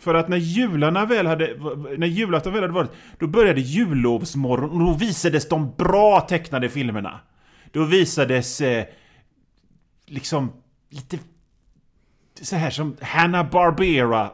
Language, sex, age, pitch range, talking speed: Swedish, male, 30-49, 130-175 Hz, 110 wpm